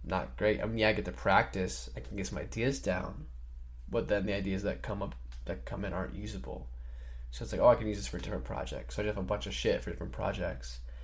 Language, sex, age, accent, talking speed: English, male, 20-39, American, 270 wpm